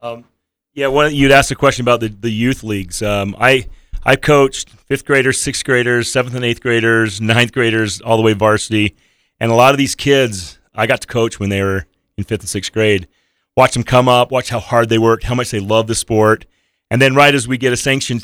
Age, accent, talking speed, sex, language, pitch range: 30-49, American, 240 wpm, male, English, 105-130 Hz